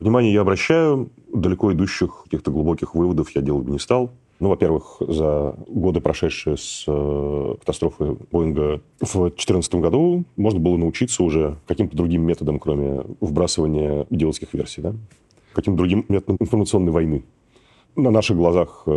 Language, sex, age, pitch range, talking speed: Russian, male, 40-59, 75-100 Hz, 140 wpm